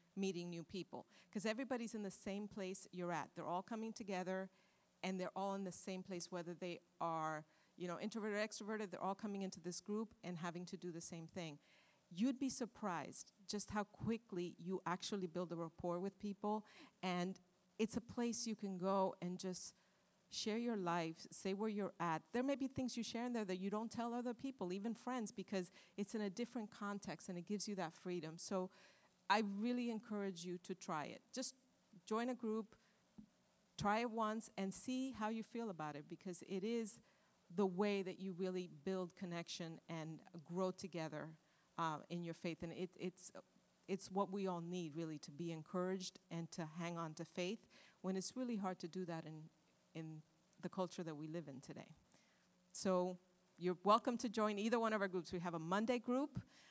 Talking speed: 200 wpm